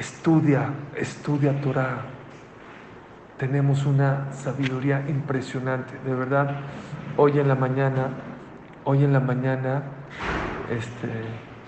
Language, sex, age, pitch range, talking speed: English, male, 50-69, 125-140 Hz, 90 wpm